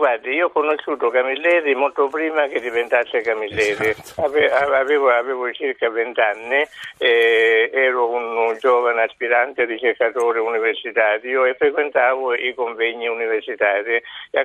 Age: 60-79